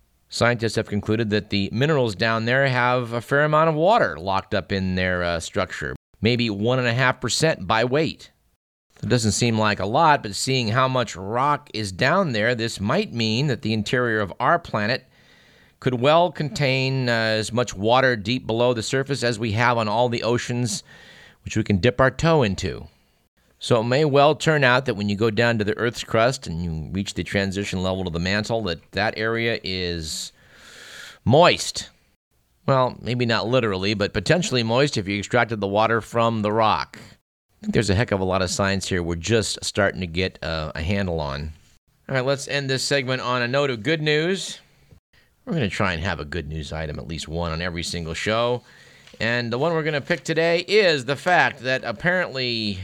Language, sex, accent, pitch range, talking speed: English, male, American, 100-130 Hz, 205 wpm